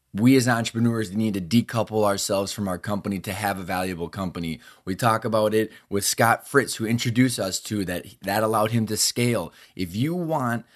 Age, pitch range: 20-39, 100-125 Hz